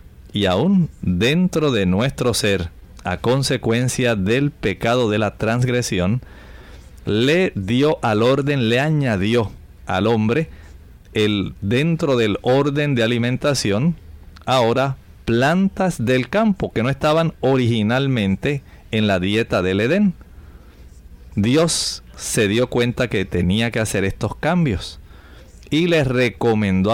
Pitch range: 95-140 Hz